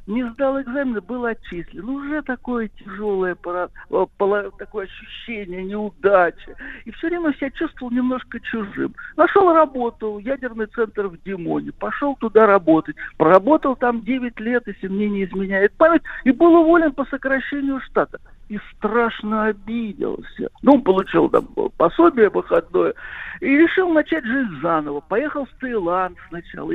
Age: 60-79